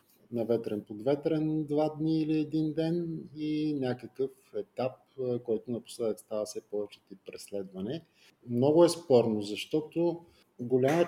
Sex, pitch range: male, 115-150 Hz